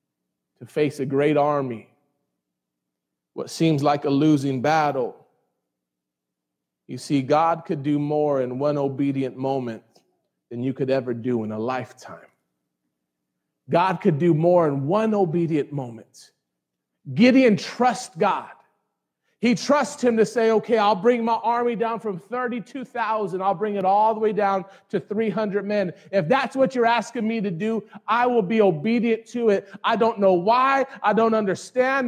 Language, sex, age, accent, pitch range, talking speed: English, male, 30-49, American, 150-245 Hz, 155 wpm